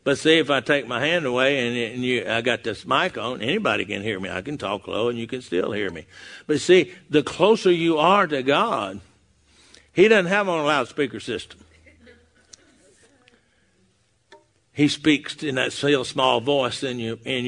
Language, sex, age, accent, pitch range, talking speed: English, male, 60-79, American, 125-170 Hz, 190 wpm